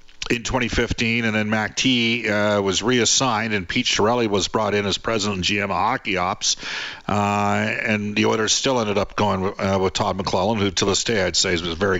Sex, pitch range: male, 100-120 Hz